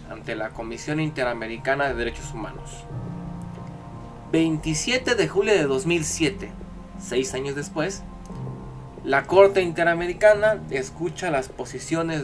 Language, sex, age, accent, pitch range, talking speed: Spanish, male, 20-39, Mexican, 125-175 Hz, 105 wpm